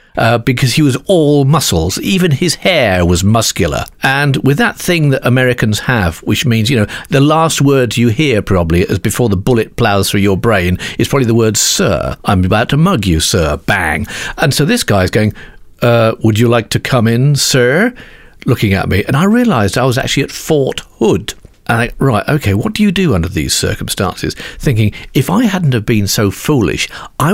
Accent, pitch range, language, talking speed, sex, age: British, 105-150 Hz, English, 205 wpm, male, 50-69